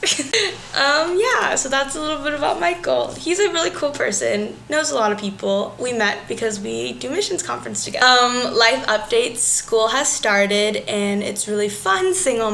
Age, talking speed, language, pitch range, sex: 10-29, 185 wpm, English, 205-250 Hz, female